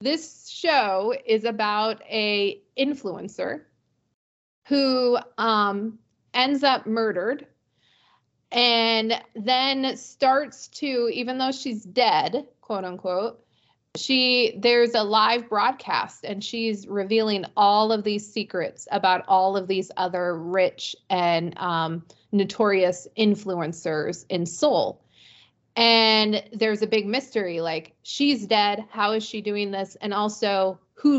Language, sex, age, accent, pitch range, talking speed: English, female, 20-39, American, 190-235 Hz, 115 wpm